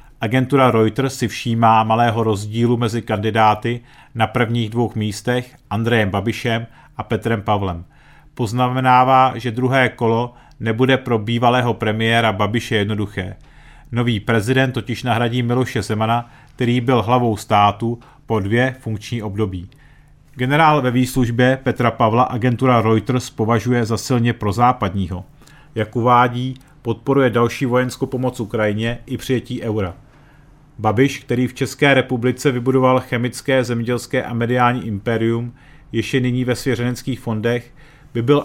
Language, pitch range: Czech, 115-130 Hz